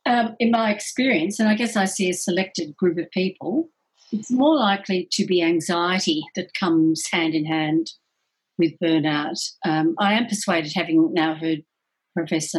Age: 50-69